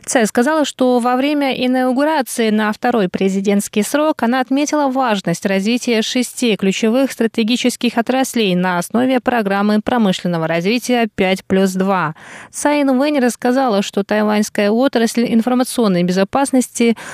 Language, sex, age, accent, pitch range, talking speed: Russian, female, 20-39, native, 195-240 Hz, 120 wpm